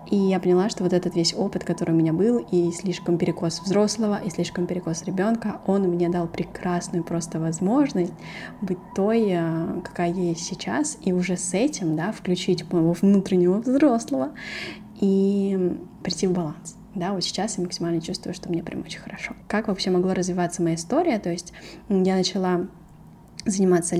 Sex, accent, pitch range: female, native, 175-205 Hz